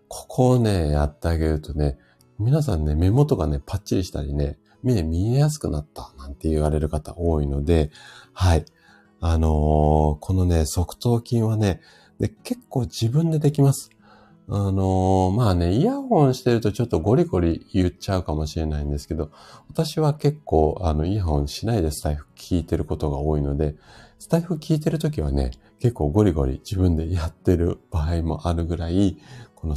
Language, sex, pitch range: Japanese, male, 80-125 Hz